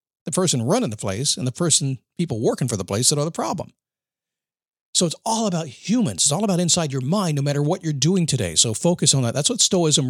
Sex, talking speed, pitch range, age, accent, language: male, 245 wpm, 125-185 Hz, 50-69, American, English